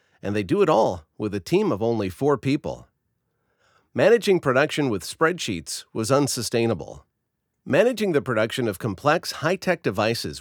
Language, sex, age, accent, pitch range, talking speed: English, male, 50-69, American, 105-145 Hz, 145 wpm